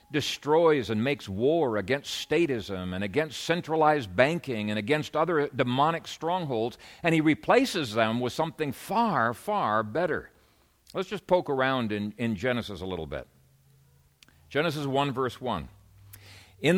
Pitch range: 120-175 Hz